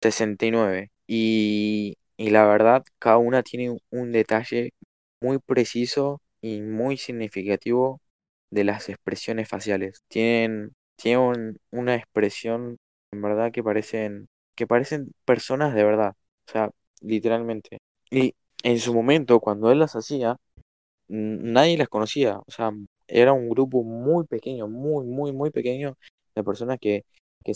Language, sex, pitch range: Spanish, male, 100-120 Hz